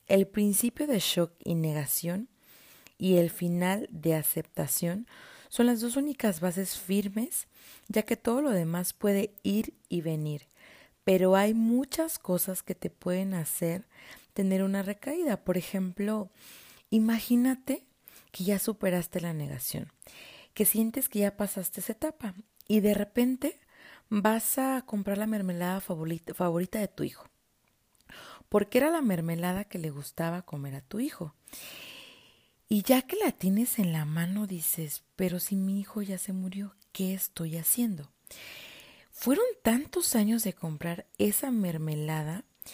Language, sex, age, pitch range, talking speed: Spanish, female, 30-49, 180-225 Hz, 145 wpm